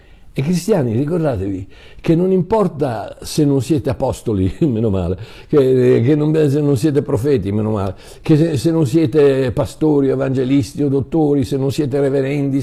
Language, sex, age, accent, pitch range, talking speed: Italian, male, 60-79, native, 105-145 Hz, 160 wpm